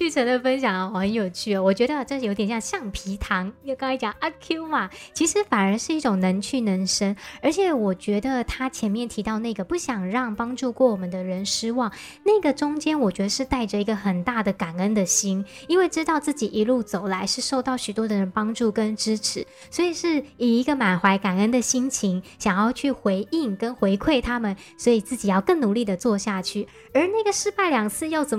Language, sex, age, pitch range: Chinese, male, 20-39, 205-265 Hz